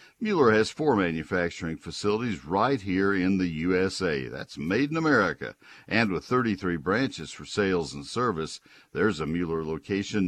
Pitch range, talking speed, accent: 90-115 Hz, 150 wpm, American